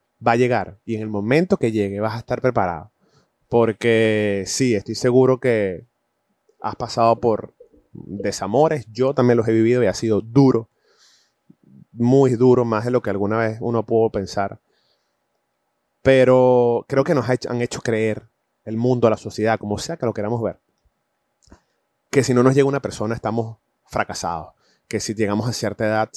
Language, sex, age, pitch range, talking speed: Spanish, male, 30-49, 105-125 Hz, 170 wpm